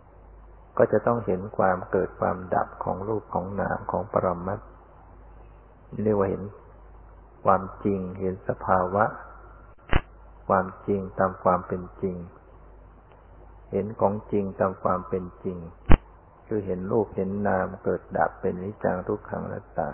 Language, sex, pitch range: Thai, male, 85-100 Hz